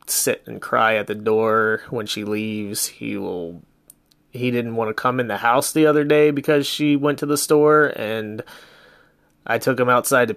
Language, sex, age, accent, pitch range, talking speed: English, male, 30-49, American, 110-125 Hz, 195 wpm